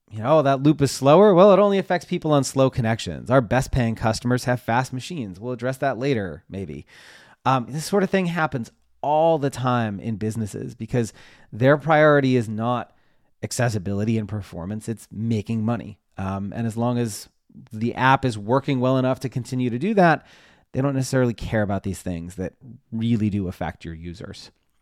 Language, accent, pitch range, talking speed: English, American, 105-140 Hz, 185 wpm